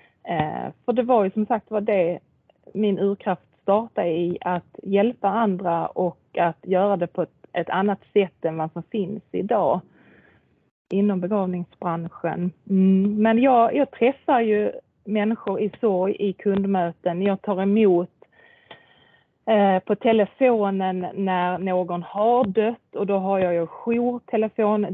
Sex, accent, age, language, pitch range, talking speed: female, native, 30-49, Swedish, 180-215 Hz, 130 wpm